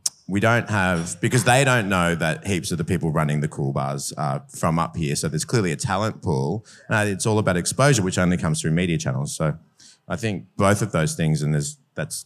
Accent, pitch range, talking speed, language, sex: Australian, 85-120 Hz, 235 wpm, English, male